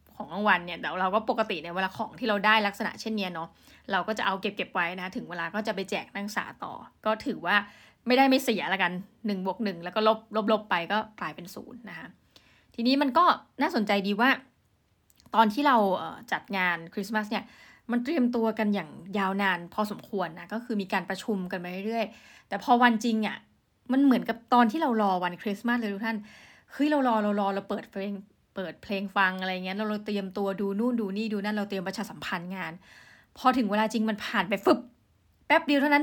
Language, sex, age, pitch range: Thai, female, 20-39, 195-235 Hz